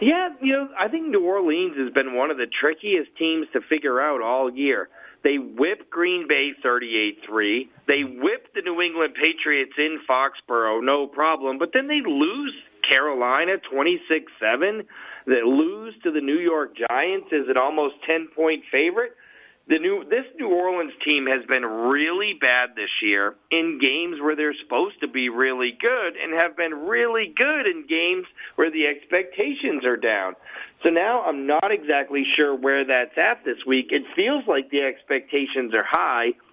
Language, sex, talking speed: English, male, 175 wpm